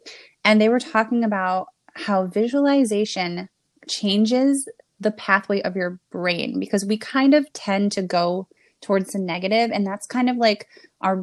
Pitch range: 185-220 Hz